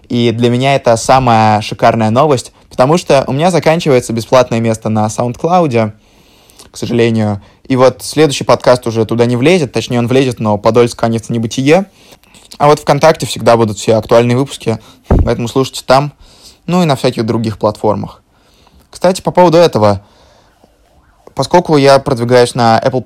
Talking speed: 160 wpm